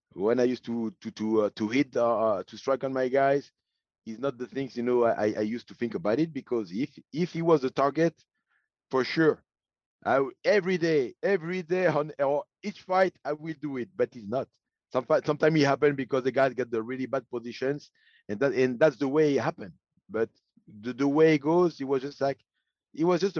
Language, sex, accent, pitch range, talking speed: English, male, French, 120-150 Hz, 220 wpm